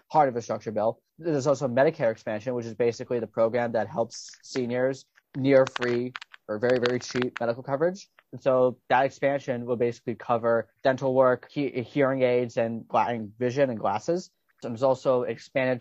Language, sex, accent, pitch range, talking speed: English, male, American, 115-135 Hz, 165 wpm